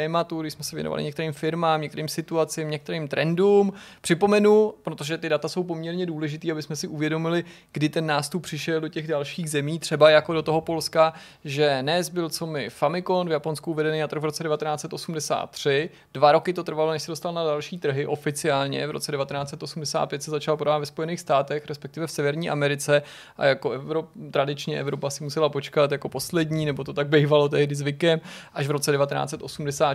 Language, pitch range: Czech, 145-165 Hz